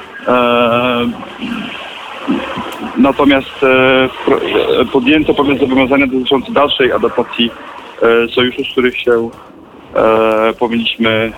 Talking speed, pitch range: 70 wpm, 110-130 Hz